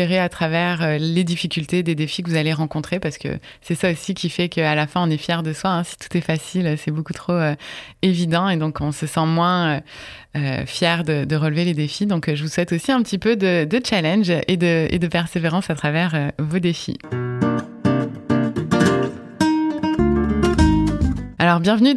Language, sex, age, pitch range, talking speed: French, female, 20-39, 165-195 Hz, 170 wpm